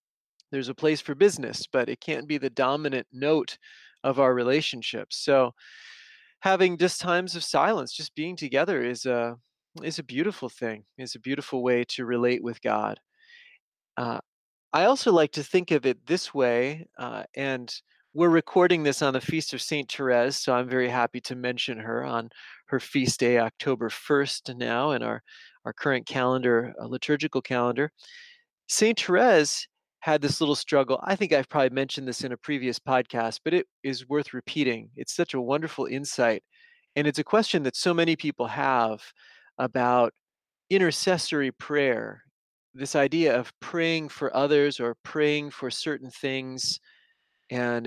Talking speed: 165 wpm